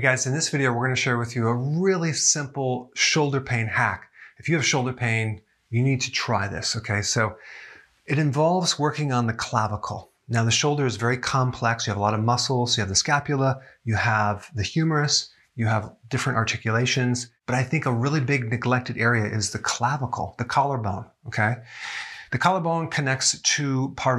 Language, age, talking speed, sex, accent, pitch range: English, 30-49, 190 wpm, male, American, 115-140 Hz